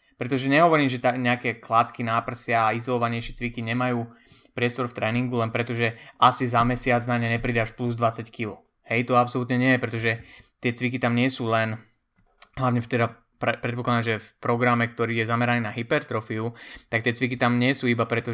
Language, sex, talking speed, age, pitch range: Slovak, male, 190 wpm, 20-39, 115-130 Hz